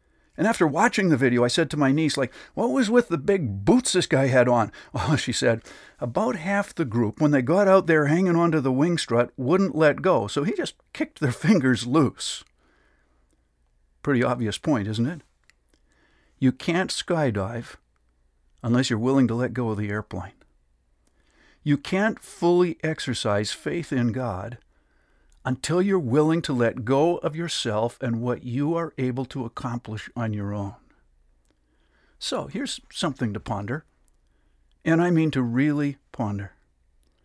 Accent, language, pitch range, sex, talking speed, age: American, English, 105-165 Hz, male, 165 wpm, 50-69